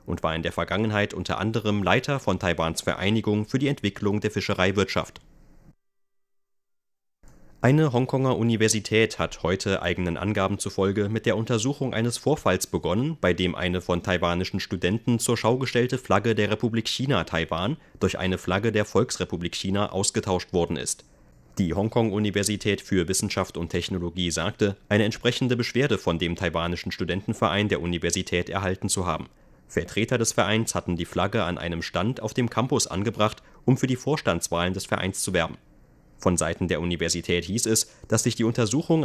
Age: 30-49